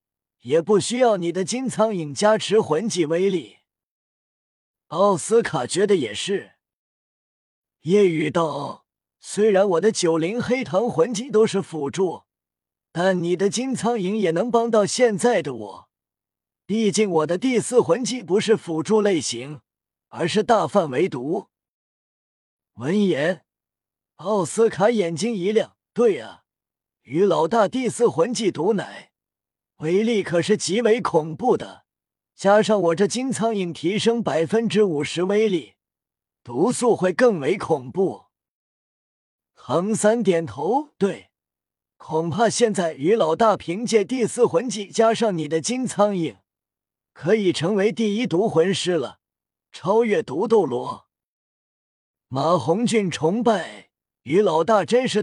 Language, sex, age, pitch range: Chinese, male, 30-49, 160-225 Hz